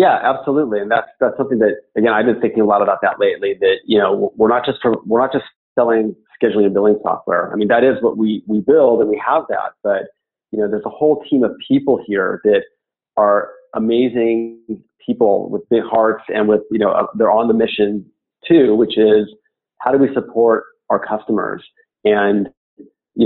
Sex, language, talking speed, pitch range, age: male, English, 205 wpm, 110-165 Hz, 30-49